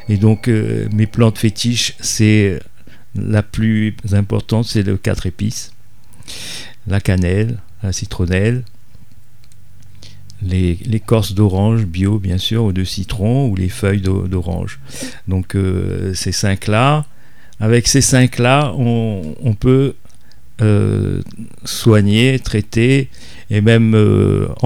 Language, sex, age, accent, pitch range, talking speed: French, male, 50-69, French, 100-125 Hz, 120 wpm